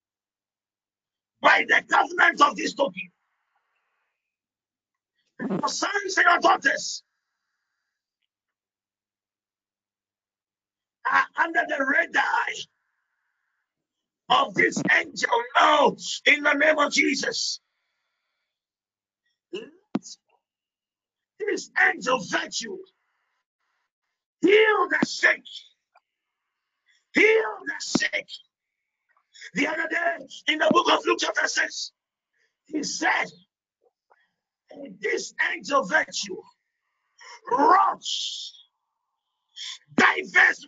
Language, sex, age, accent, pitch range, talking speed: English, male, 50-69, American, 235-395 Hz, 75 wpm